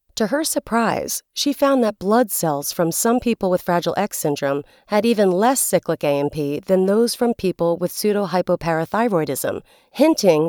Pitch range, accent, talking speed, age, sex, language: 170-230 Hz, American, 155 wpm, 40-59, female, English